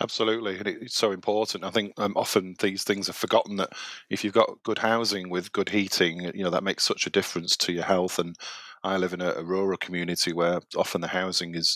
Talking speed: 230 wpm